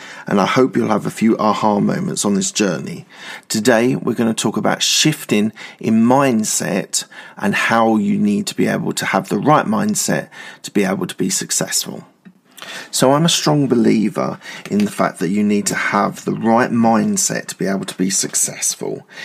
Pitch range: 110-145 Hz